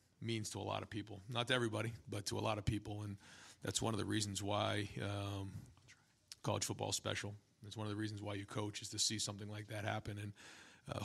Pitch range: 105-115 Hz